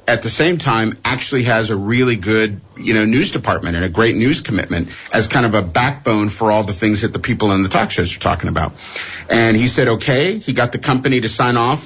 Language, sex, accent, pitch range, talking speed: English, male, American, 105-125 Hz, 245 wpm